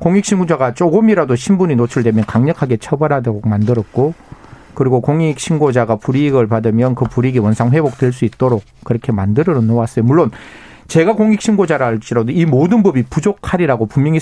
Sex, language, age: male, Korean, 40-59